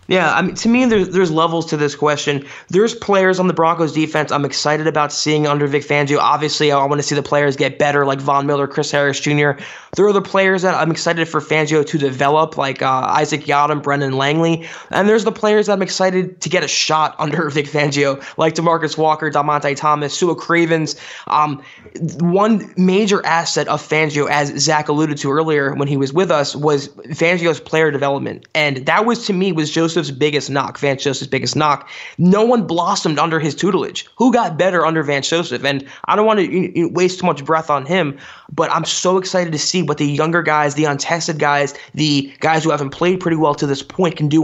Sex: male